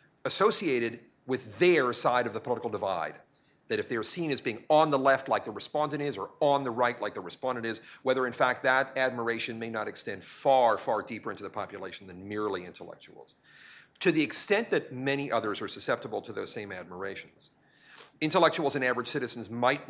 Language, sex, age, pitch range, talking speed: English, male, 40-59, 120-170 Hz, 190 wpm